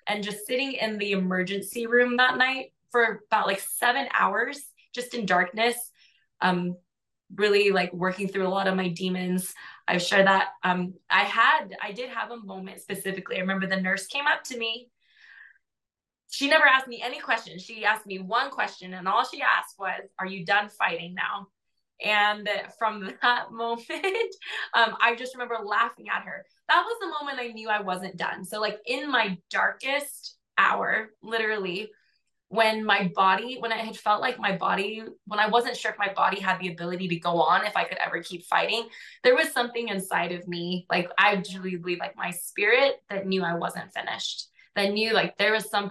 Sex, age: female, 20-39